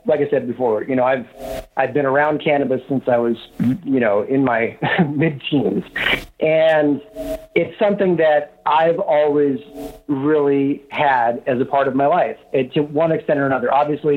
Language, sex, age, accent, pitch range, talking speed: English, male, 40-59, American, 135-170 Hz, 170 wpm